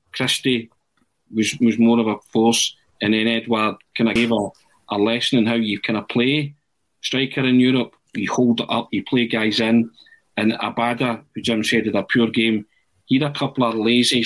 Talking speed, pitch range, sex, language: 200 wpm, 110-125 Hz, male, English